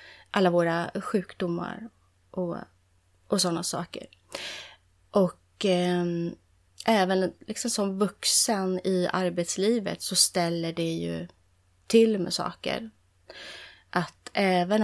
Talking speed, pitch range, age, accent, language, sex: 95 wpm, 165-190 Hz, 20-39, native, Swedish, female